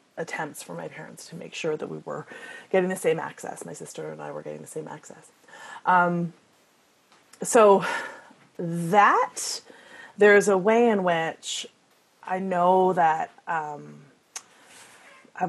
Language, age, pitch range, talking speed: English, 30-49, 165-200 Hz, 140 wpm